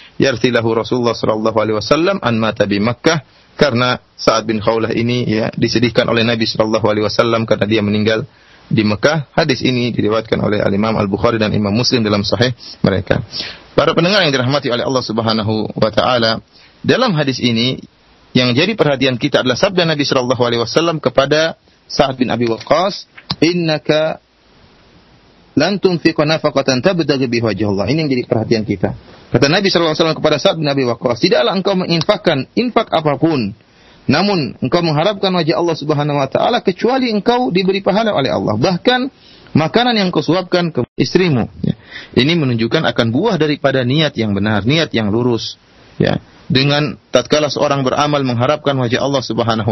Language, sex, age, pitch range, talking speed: Malay, male, 30-49, 115-155 Hz, 150 wpm